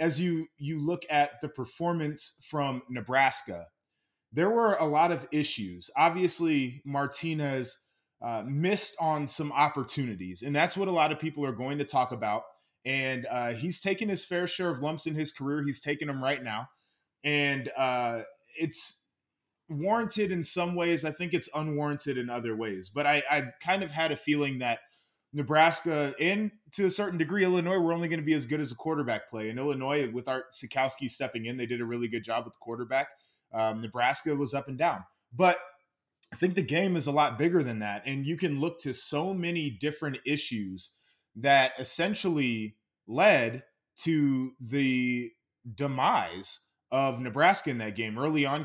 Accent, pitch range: American, 130-160 Hz